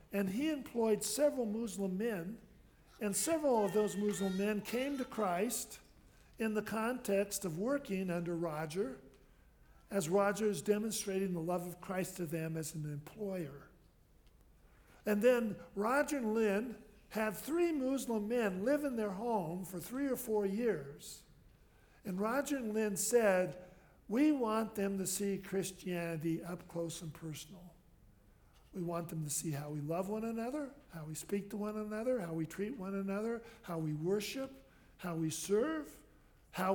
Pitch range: 170-220 Hz